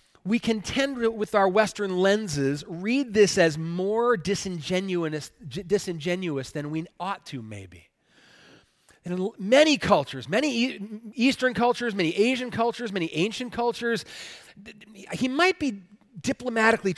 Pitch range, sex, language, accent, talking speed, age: 180-240 Hz, male, English, American, 120 wpm, 40-59